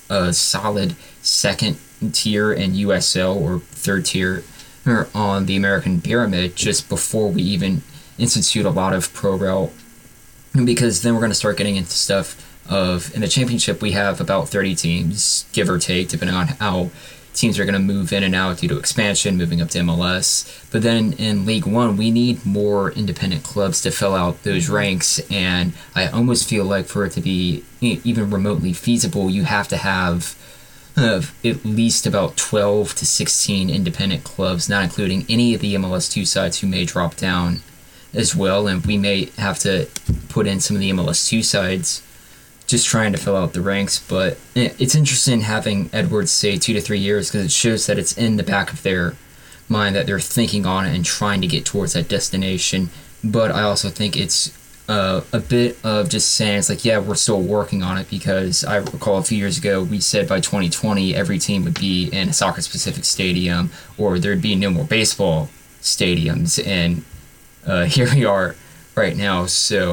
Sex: male